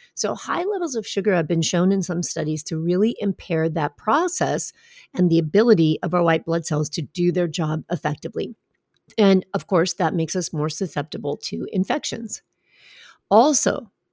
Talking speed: 170 wpm